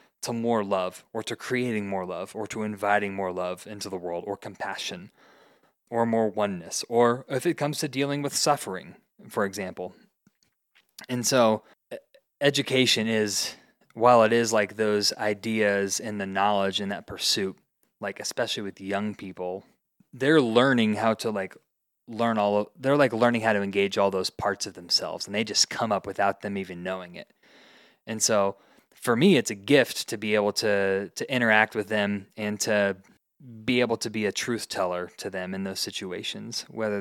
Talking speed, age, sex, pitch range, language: 180 wpm, 20-39, male, 100-120 Hz, English